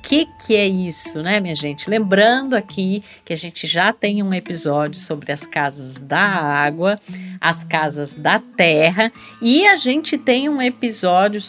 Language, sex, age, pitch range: Portuguese, female, 50-69, 175-235 Hz